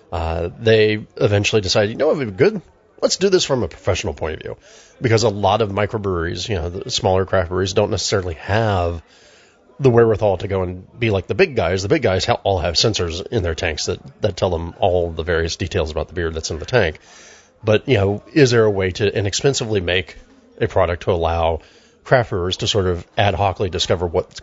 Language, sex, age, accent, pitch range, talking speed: English, male, 30-49, American, 95-130 Hz, 220 wpm